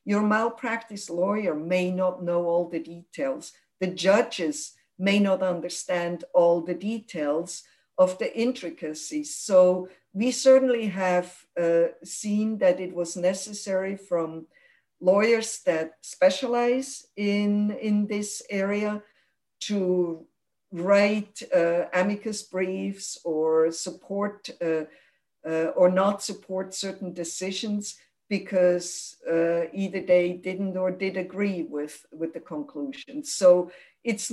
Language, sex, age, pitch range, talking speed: English, female, 50-69, 170-210 Hz, 115 wpm